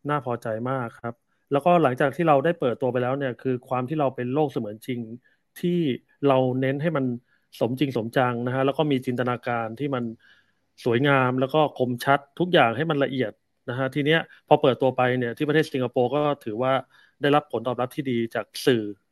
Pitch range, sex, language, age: 125-145 Hz, male, Thai, 30-49